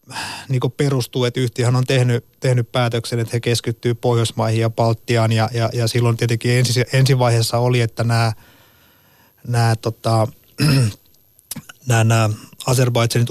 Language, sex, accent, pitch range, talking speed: Finnish, male, native, 115-125 Hz, 140 wpm